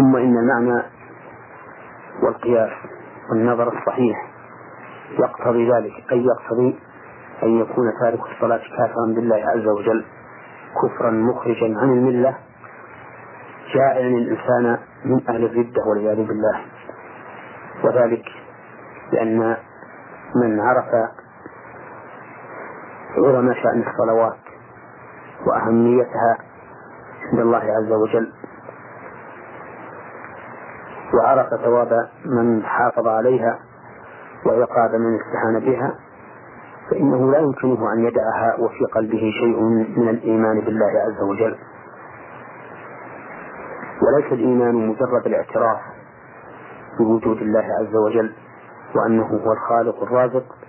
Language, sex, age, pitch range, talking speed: Arabic, male, 40-59, 115-125 Hz, 90 wpm